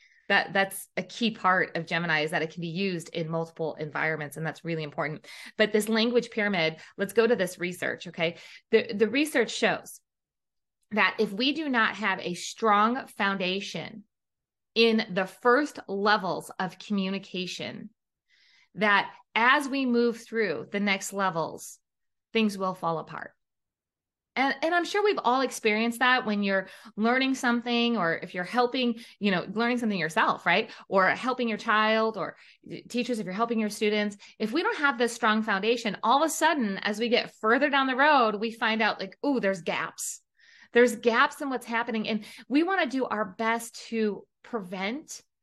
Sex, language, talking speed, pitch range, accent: female, English, 175 wpm, 195-240 Hz, American